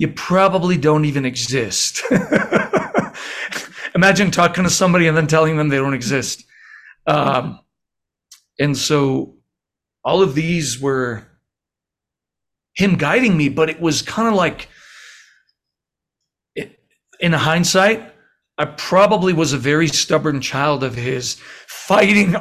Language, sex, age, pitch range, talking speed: English, male, 40-59, 140-180 Hz, 120 wpm